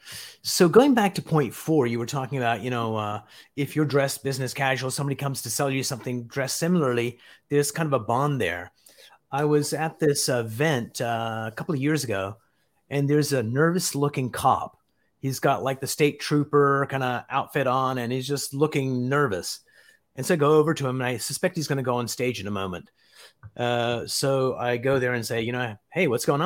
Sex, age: male, 30-49